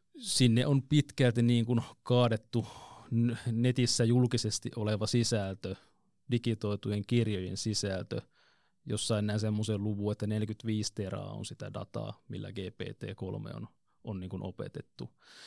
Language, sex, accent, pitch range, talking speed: Finnish, male, native, 105-120 Hz, 115 wpm